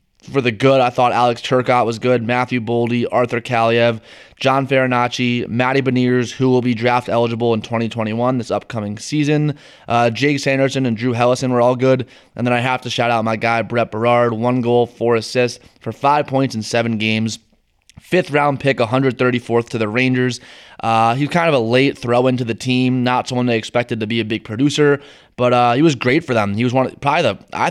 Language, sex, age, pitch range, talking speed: English, male, 20-39, 110-130 Hz, 210 wpm